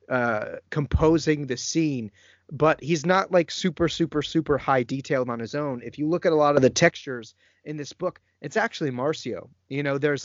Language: English